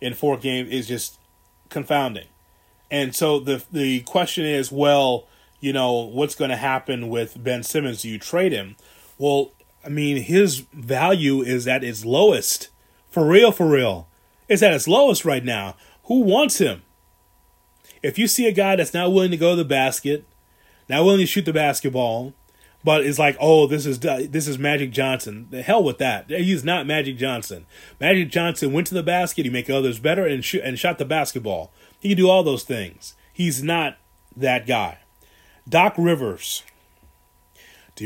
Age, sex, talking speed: 30-49, male, 180 wpm